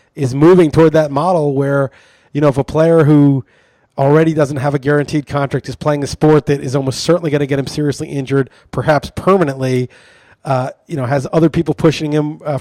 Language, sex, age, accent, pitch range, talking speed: English, male, 30-49, American, 140-160 Hz, 205 wpm